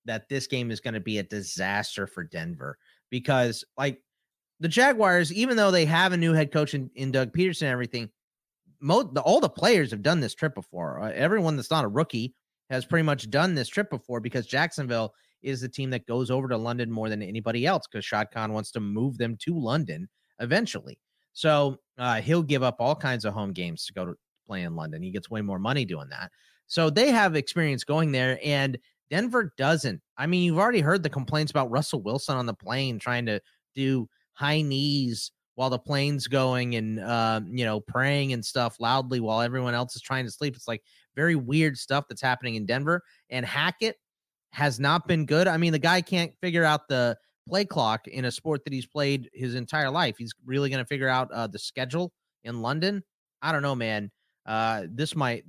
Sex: male